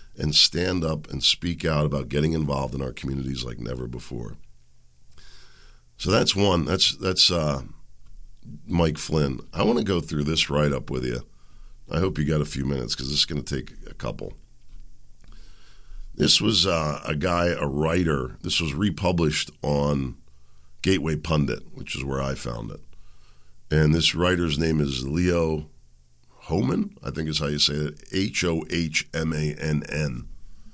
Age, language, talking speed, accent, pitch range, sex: 50-69, English, 160 wpm, American, 70-85 Hz, male